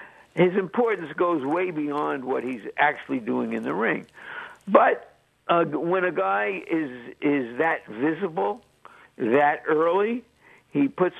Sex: male